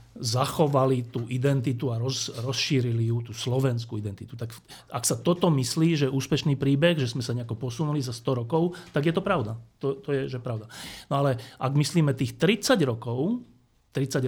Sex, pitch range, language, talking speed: male, 120-150 Hz, Slovak, 180 wpm